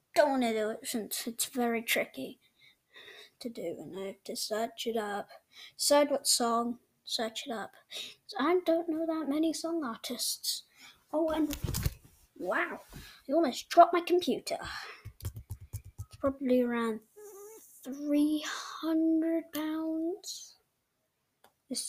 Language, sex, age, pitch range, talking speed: English, female, 20-39, 230-300 Hz, 120 wpm